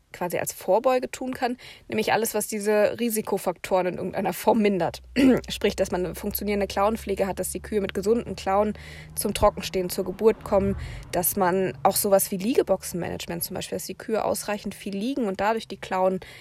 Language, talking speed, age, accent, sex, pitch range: German, 185 wpm, 20-39, German, female, 185-205 Hz